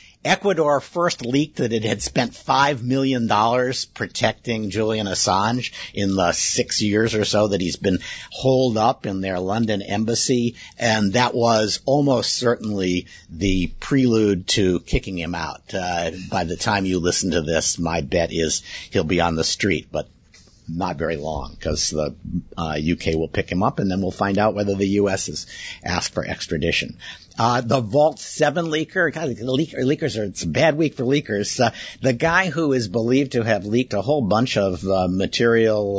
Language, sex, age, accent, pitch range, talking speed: English, male, 50-69, American, 95-125 Hz, 175 wpm